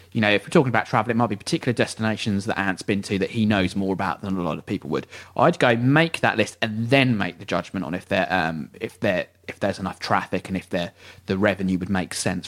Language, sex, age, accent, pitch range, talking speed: English, male, 30-49, British, 95-120 Hz, 250 wpm